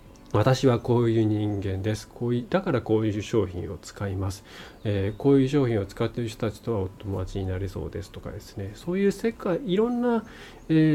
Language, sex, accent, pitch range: Japanese, male, native, 105-165 Hz